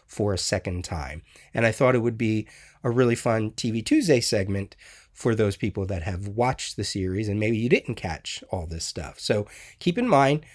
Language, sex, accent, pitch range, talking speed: English, male, American, 105-135 Hz, 205 wpm